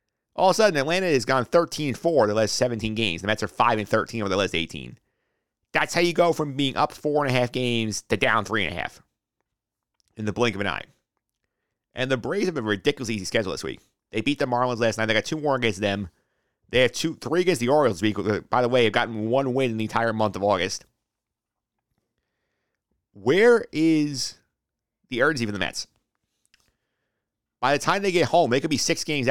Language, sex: English, male